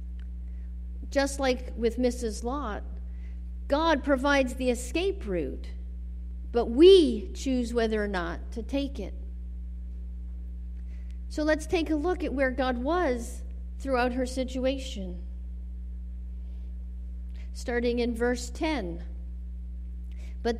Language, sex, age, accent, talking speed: English, female, 50-69, American, 105 wpm